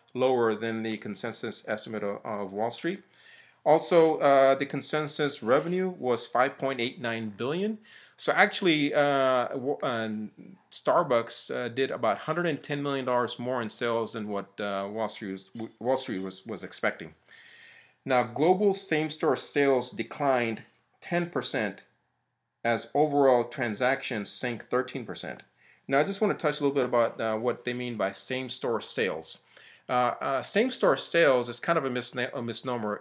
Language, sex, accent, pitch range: English, male, American, 110-140 Hz